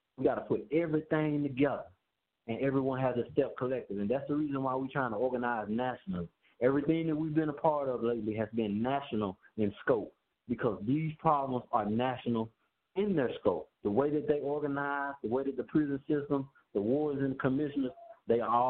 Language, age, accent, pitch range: English, 20-39, American, 120-150 Hz